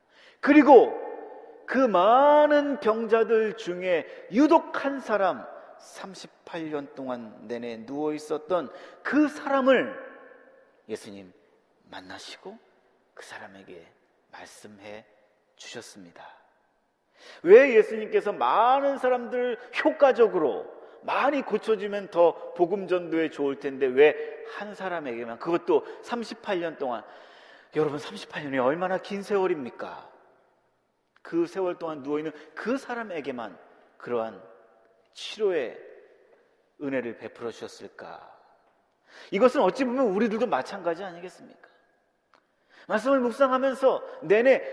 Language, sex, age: Korean, male, 40-59